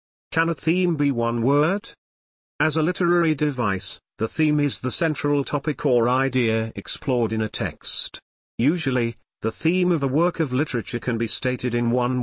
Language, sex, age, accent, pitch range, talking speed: English, male, 40-59, British, 110-145 Hz, 170 wpm